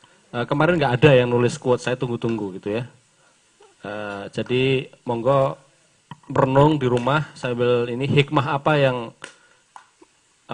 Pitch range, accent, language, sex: 125-155 Hz, native, Indonesian, male